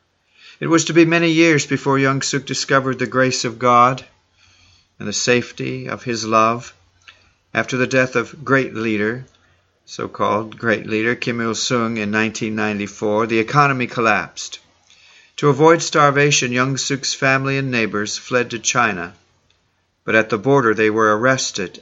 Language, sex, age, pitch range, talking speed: English, male, 50-69, 105-135 Hz, 150 wpm